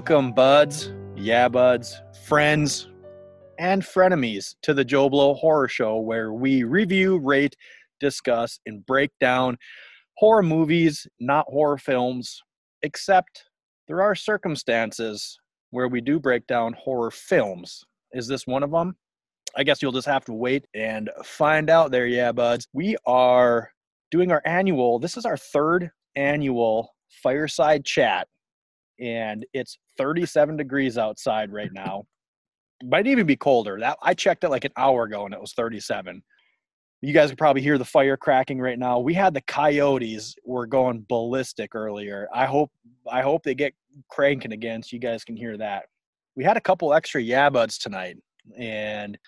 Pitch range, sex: 115-150 Hz, male